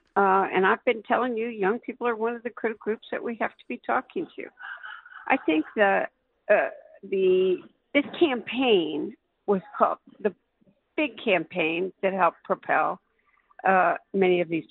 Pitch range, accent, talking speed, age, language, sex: 180-250 Hz, American, 160 wpm, 60-79, English, female